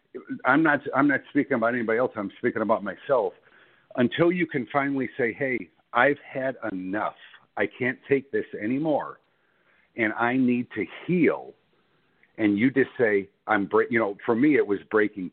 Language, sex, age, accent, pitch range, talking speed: English, male, 60-79, American, 100-125 Hz, 170 wpm